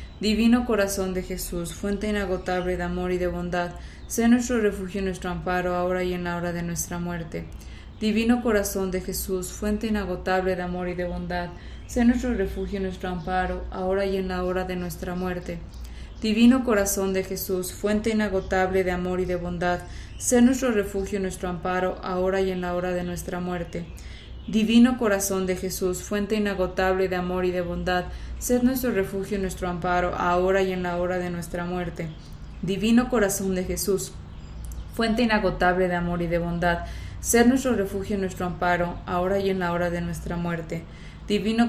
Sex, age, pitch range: female, 20-39, 175-200 Hz